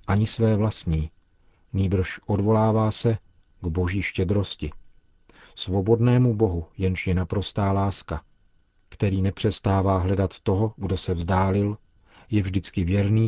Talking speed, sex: 115 wpm, male